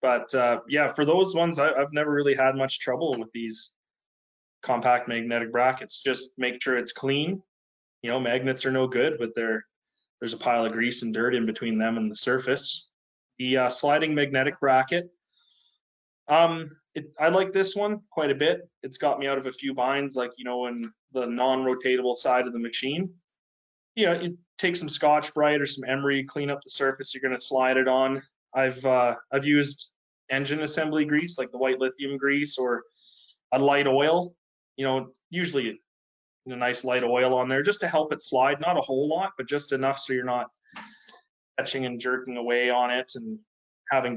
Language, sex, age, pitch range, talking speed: English, male, 20-39, 125-145 Hz, 195 wpm